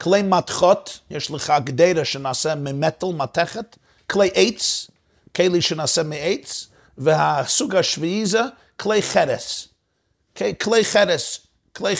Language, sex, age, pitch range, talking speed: Hebrew, male, 50-69, 140-195 Hz, 110 wpm